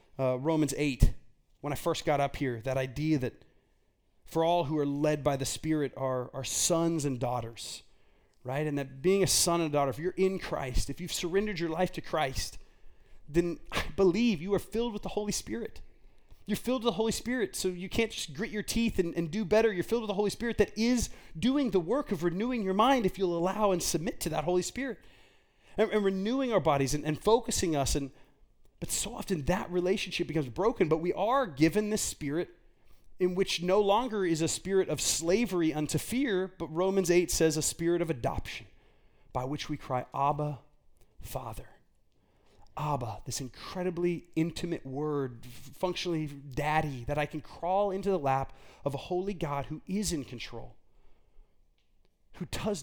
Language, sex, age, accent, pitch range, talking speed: English, male, 30-49, American, 140-195 Hz, 190 wpm